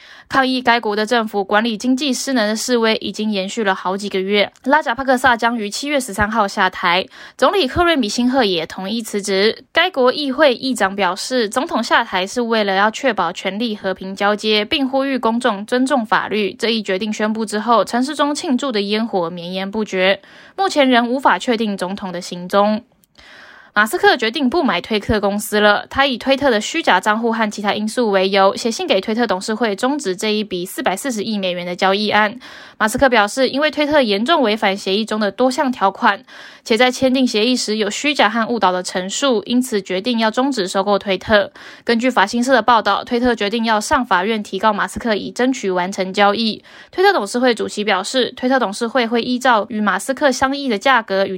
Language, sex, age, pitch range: Chinese, female, 10-29, 200-255 Hz